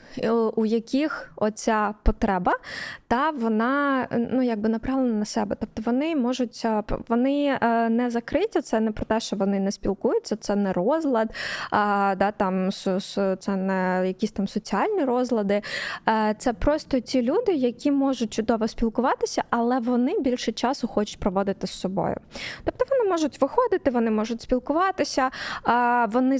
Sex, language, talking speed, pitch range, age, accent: female, Ukrainian, 140 wpm, 215-260 Hz, 20-39, native